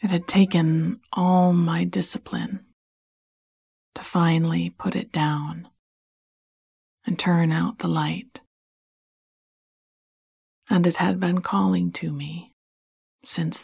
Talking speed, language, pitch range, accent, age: 105 wpm, English, 155-185 Hz, American, 40-59